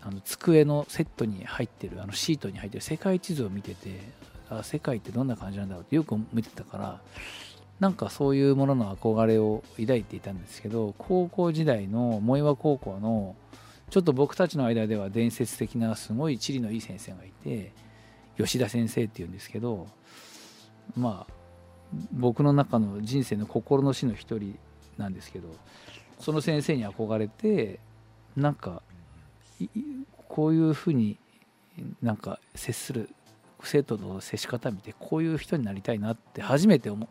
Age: 50-69